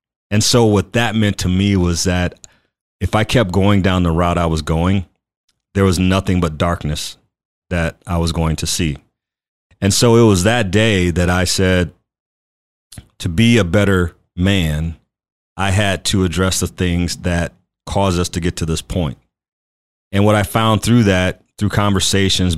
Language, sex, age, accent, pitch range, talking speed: English, male, 30-49, American, 85-100 Hz, 175 wpm